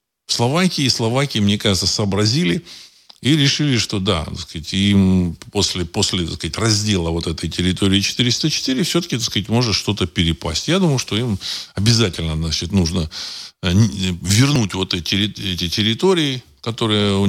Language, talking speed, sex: Russian, 140 wpm, male